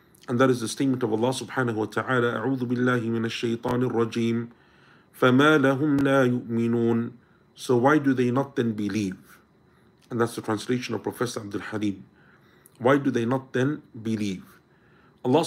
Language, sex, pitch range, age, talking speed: English, male, 120-140 Hz, 50-69, 130 wpm